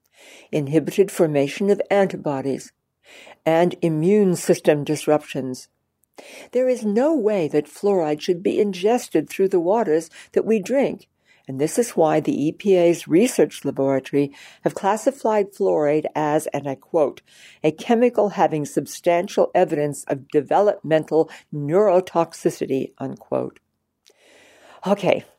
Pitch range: 150-200 Hz